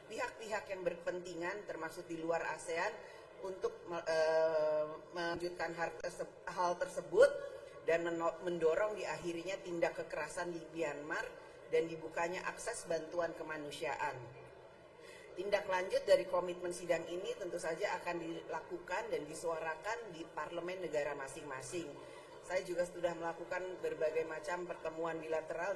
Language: Indonesian